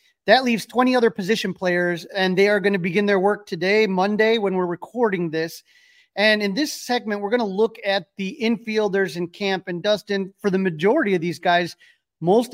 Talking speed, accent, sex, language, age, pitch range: 200 wpm, American, male, English, 30-49, 170-200 Hz